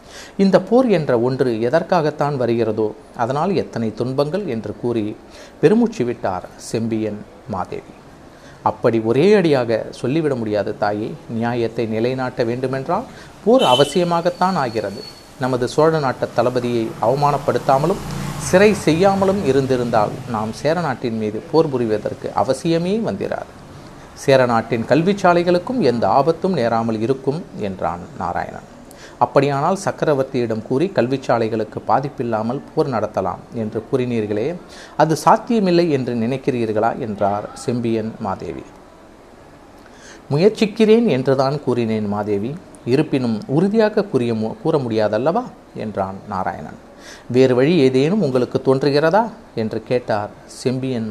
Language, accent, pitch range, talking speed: Tamil, native, 115-160 Hz, 100 wpm